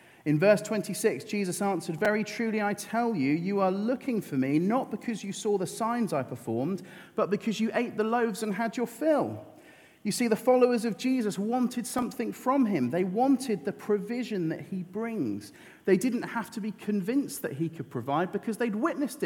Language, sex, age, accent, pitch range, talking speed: English, male, 40-59, British, 140-210 Hz, 195 wpm